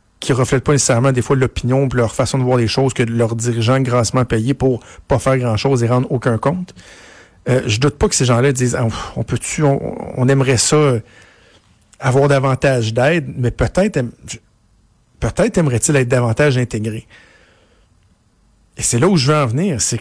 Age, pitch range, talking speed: 60-79, 115-145 Hz, 190 wpm